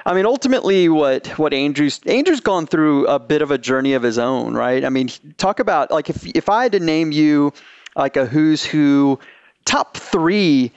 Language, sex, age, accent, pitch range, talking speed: English, male, 30-49, American, 135-170 Hz, 200 wpm